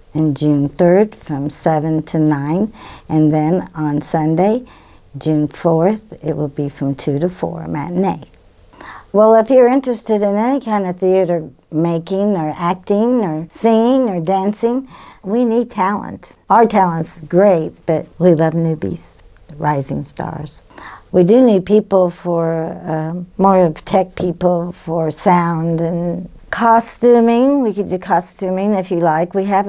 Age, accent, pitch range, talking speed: 50-69, American, 160-190 Hz, 150 wpm